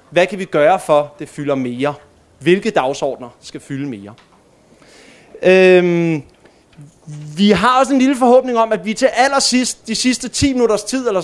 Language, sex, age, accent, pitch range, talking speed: Danish, male, 20-39, native, 155-225 Hz, 170 wpm